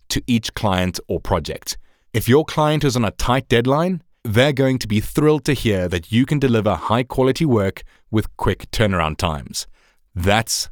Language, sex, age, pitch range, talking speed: English, male, 30-49, 100-135 Hz, 180 wpm